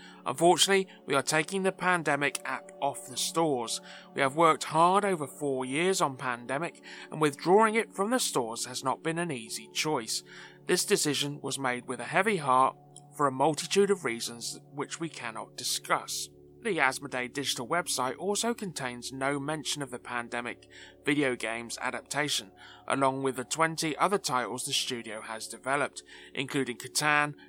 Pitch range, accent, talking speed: 120-170 Hz, British, 160 wpm